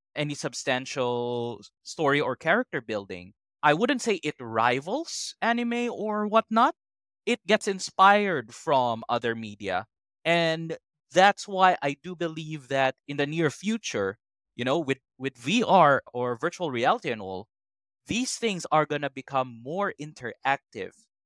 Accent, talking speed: Filipino, 140 wpm